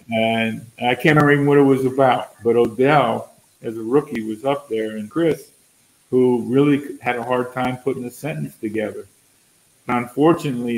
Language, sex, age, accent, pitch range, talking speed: English, male, 50-69, American, 110-130 Hz, 165 wpm